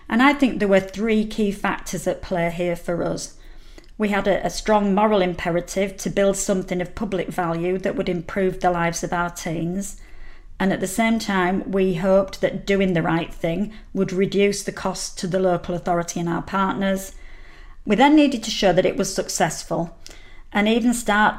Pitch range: 180-210 Hz